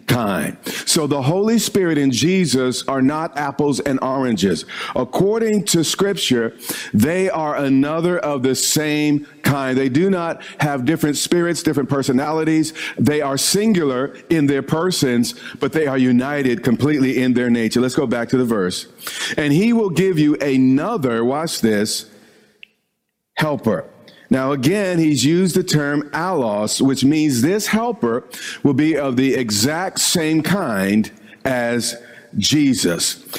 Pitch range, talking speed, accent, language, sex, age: 130-170 Hz, 140 wpm, American, English, male, 50-69